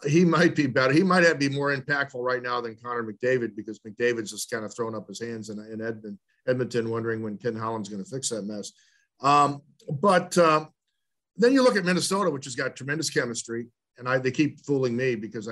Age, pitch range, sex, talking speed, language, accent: 50-69, 120-155 Hz, male, 215 wpm, English, American